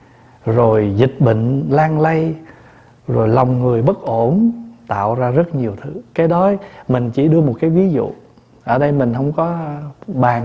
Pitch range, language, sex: 120-140 Hz, Vietnamese, male